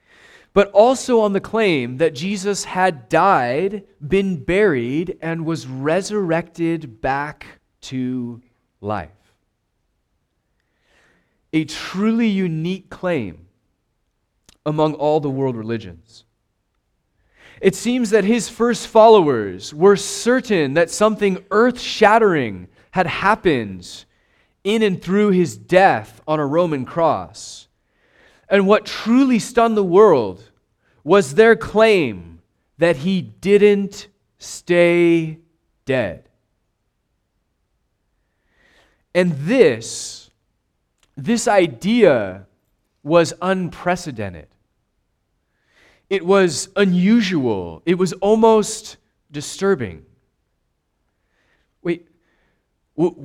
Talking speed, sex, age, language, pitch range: 85 wpm, male, 30-49, English, 125-200 Hz